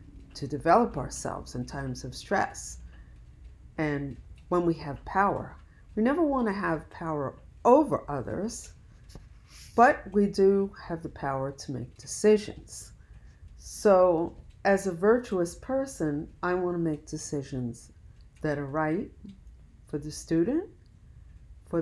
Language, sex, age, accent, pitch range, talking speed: English, female, 50-69, American, 135-180 Hz, 120 wpm